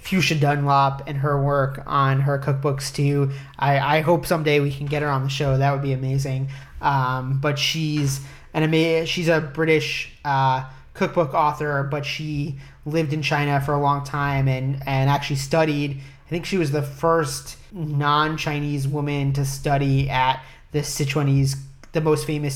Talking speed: 170 wpm